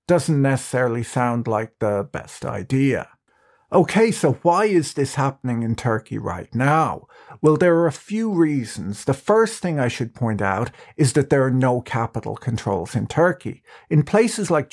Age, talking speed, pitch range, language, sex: 50-69, 170 wpm, 115-150 Hz, English, male